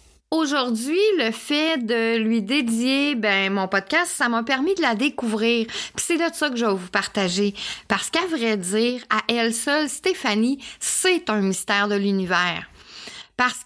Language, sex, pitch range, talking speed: French, female, 215-290 Hz, 170 wpm